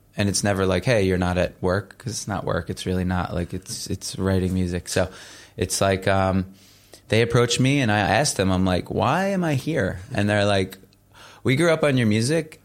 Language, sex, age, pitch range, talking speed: English, male, 20-39, 95-110 Hz, 225 wpm